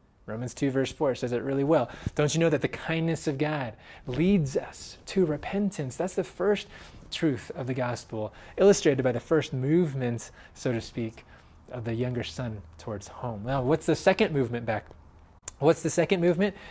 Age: 20-39